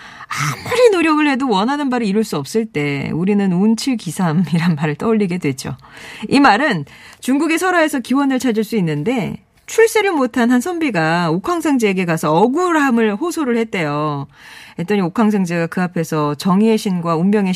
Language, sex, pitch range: Korean, female, 175-255 Hz